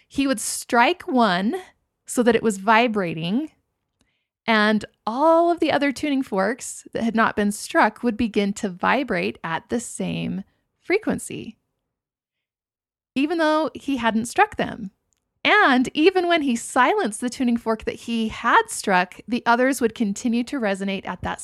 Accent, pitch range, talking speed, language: American, 205-270 Hz, 155 wpm, English